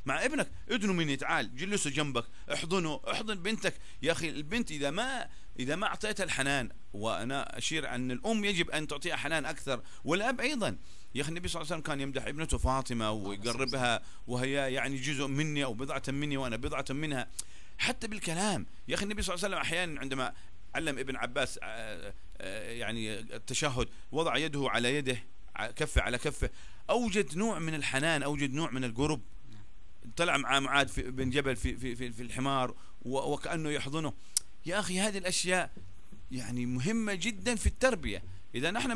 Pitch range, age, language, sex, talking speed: 125-175 Hz, 40-59, Arabic, male, 170 wpm